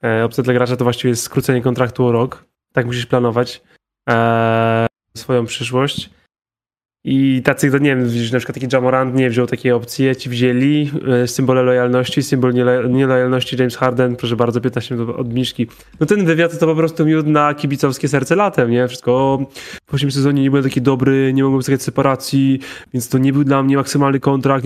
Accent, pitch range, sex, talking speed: native, 125-140 Hz, male, 185 wpm